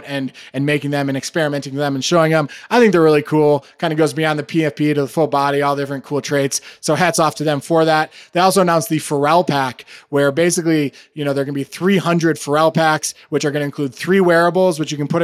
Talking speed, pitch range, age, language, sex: 260 wpm, 140-165 Hz, 20-39, English, male